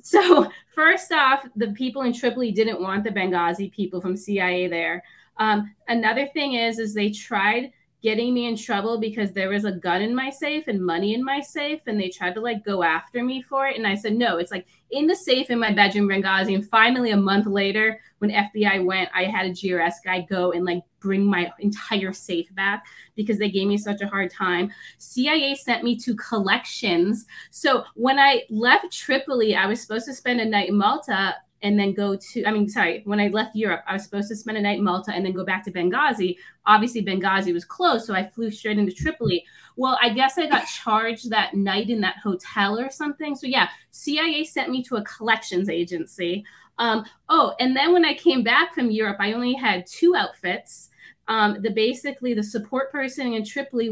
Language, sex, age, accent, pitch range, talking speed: English, female, 20-39, American, 195-250 Hz, 215 wpm